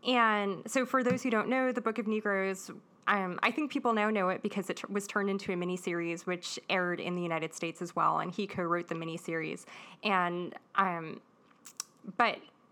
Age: 20-39